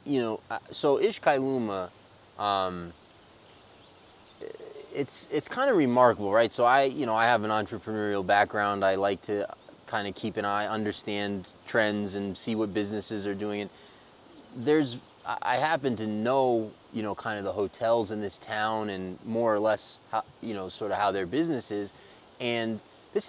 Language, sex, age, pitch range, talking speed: English, male, 20-39, 100-130 Hz, 165 wpm